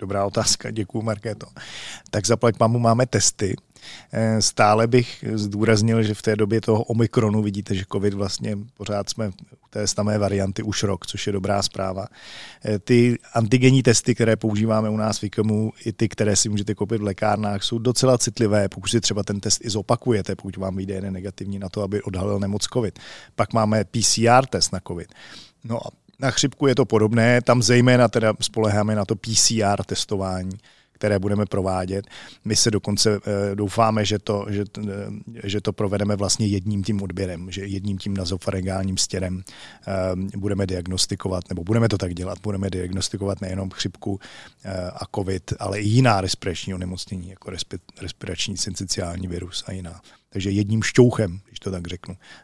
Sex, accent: male, native